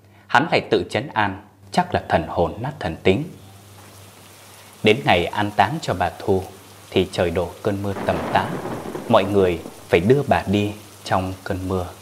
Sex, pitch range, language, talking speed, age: male, 100-110 Hz, Vietnamese, 175 wpm, 20-39